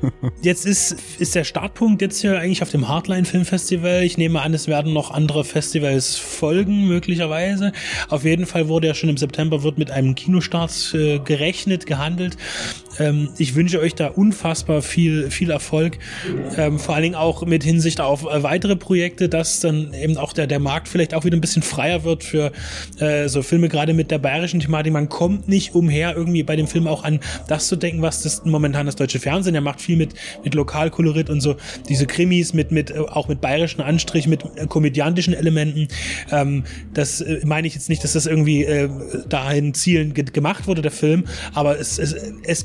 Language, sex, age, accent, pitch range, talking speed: German, male, 20-39, German, 150-170 Hz, 195 wpm